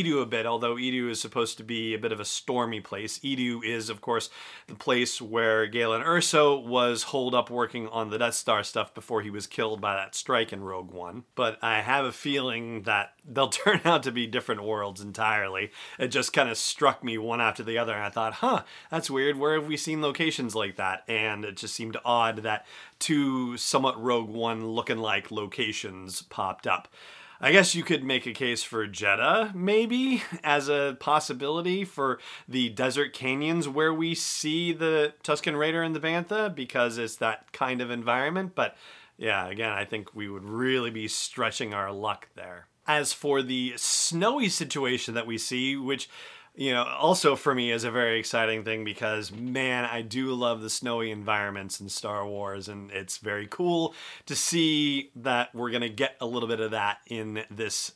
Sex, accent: male, American